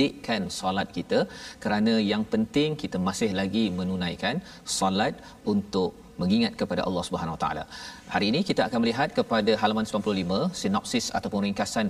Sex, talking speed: male, 145 wpm